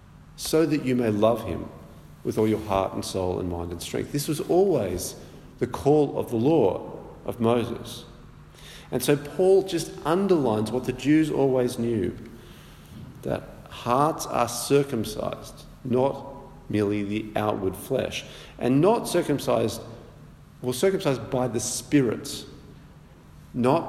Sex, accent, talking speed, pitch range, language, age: male, Australian, 135 wpm, 105-140 Hz, English, 50-69